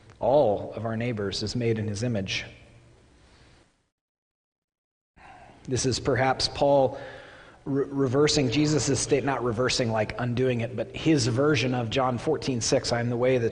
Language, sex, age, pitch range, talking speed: English, male, 30-49, 115-140 Hz, 145 wpm